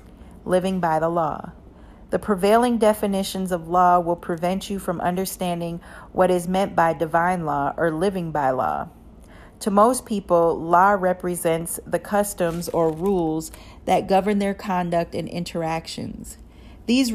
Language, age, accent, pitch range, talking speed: English, 40-59, American, 170-195 Hz, 140 wpm